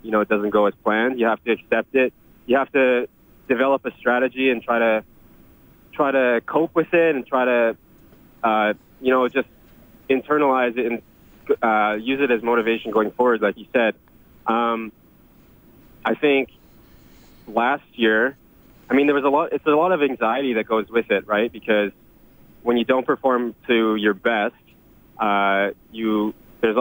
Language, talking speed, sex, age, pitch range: English, 175 wpm, male, 20-39, 110-130 Hz